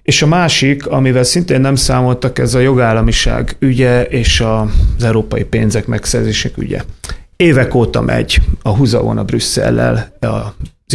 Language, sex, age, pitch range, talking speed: Hungarian, male, 30-49, 110-130 Hz, 135 wpm